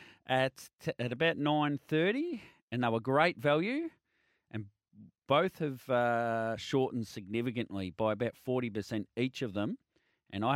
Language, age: English, 30-49